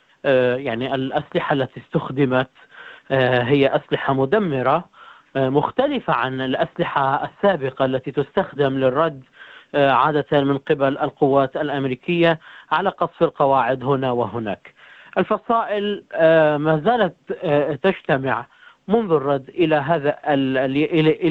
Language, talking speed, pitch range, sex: Arabic, 90 wpm, 140-195 Hz, male